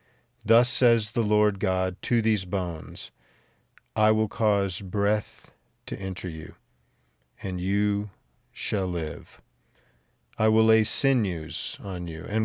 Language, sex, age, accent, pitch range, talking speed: English, male, 50-69, American, 95-115 Hz, 125 wpm